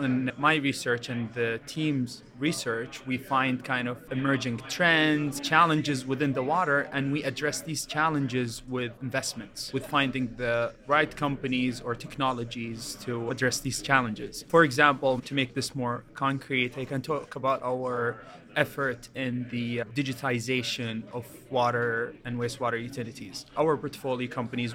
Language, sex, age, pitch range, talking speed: English, male, 20-39, 120-140 Hz, 145 wpm